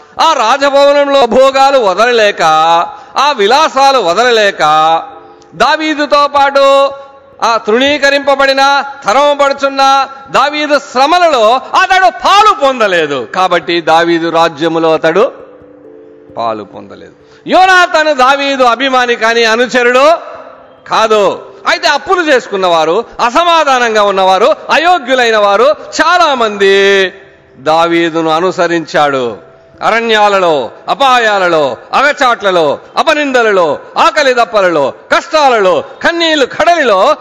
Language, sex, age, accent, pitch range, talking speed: Telugu, male, 50-69, native, 180-295 Hz, 80 wpm